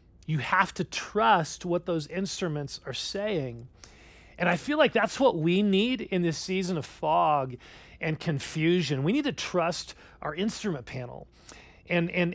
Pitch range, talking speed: 160-210 Hz, 160 wpm